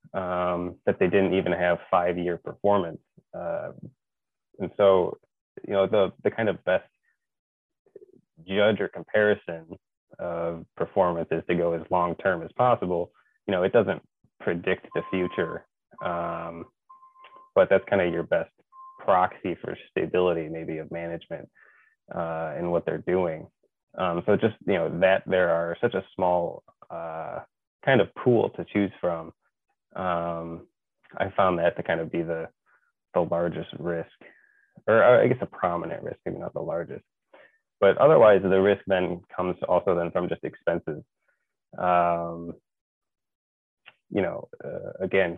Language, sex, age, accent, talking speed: English, male, 20-39, American, 150 wpm